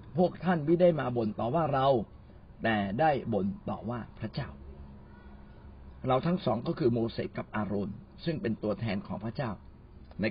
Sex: male